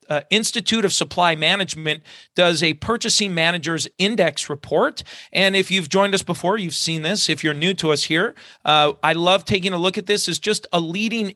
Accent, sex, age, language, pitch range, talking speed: American, male, 40-59, English, 165-200 Hz, 200 wpm